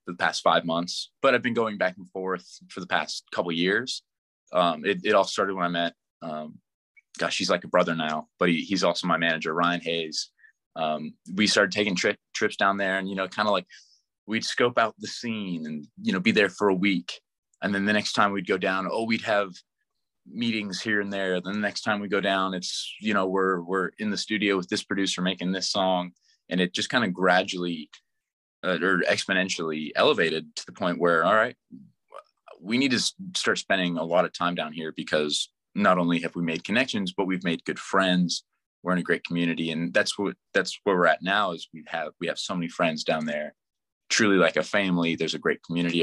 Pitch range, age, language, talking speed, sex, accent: 85-100 Hz, 20-39, English, 225 wpm, male, American